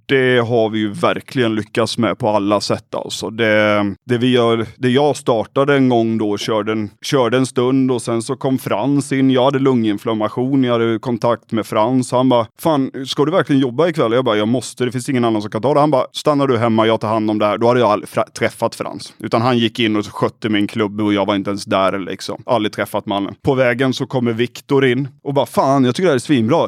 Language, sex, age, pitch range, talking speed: Swedish, male, 30-49, 110-140 Hz, 245 wpm